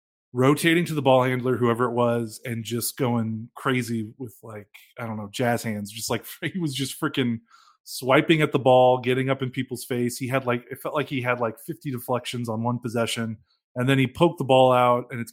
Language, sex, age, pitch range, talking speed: English, male, 20-39, 120-150 Hz, 225 wpm